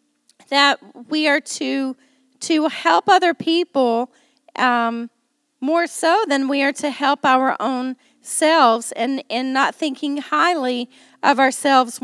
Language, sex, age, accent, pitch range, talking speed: English, female, 40-59, American, 250-310 Hz, 125 wpm